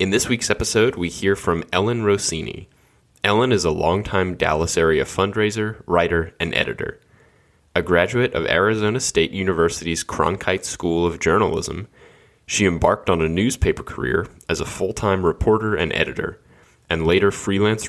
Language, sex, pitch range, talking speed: English, male, 80-100 Hz, 145 wpm